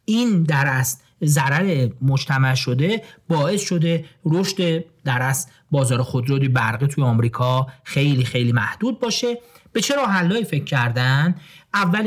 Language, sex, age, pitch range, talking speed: Persian, male, 40-59, 135-185 Hz, 120 wpm